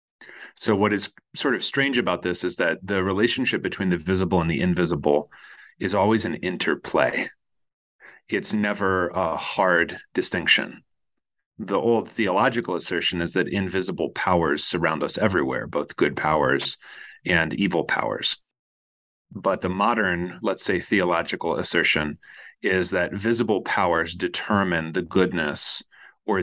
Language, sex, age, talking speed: English, male, 30-49, 135 wpm